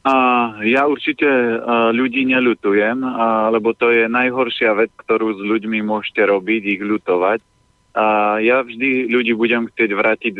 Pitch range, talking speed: 105-120 Hz, 150 wpm